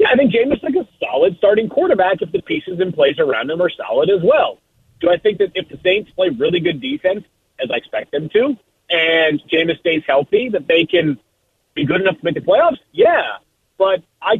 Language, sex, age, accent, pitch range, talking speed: English, male, 40-59, American, 150-190 Hz, 225 wpm